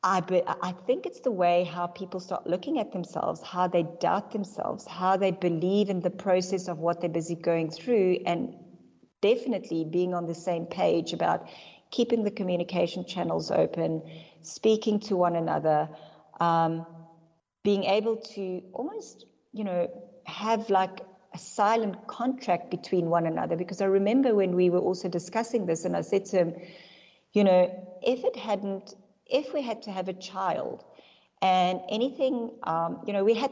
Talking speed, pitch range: 170 wpm, 165-200 Hz